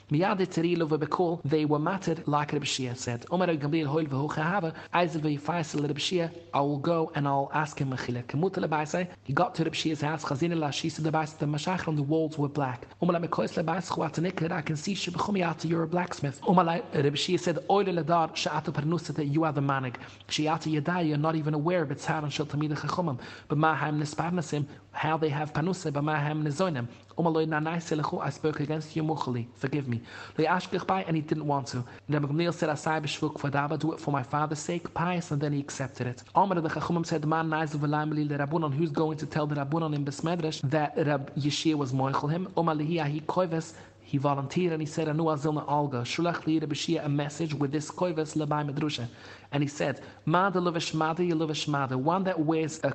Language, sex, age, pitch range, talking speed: English, male, 30-49, 145-165 Hz, 205 wpm